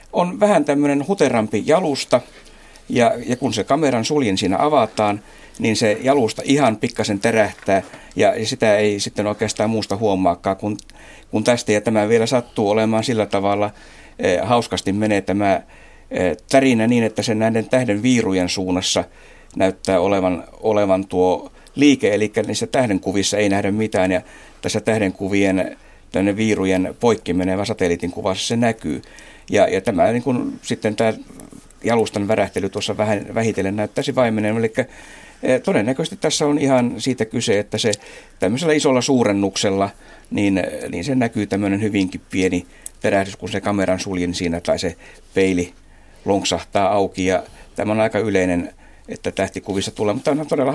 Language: Finnish